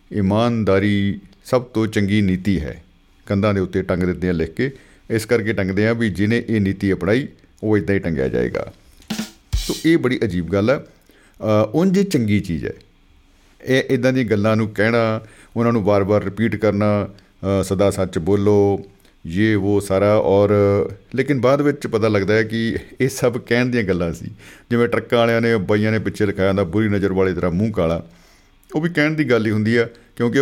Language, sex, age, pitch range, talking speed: Punjabi, male, 50-69, 95-120 Hz, 160 wpm